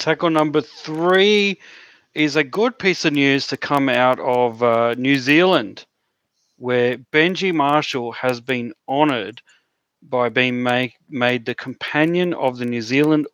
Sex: male